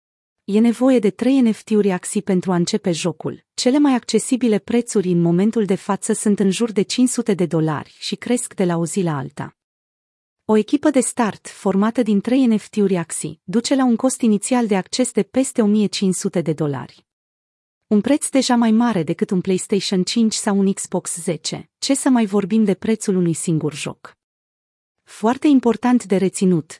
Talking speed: 180 wpm